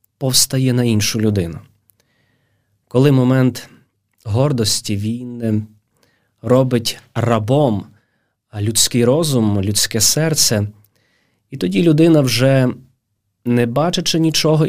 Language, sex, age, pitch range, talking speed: Ukrainian, male, 20-39, 105-130 Hz, 85 wpm